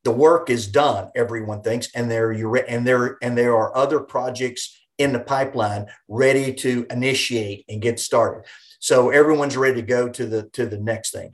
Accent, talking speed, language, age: American, 190 wpm, English, 50-69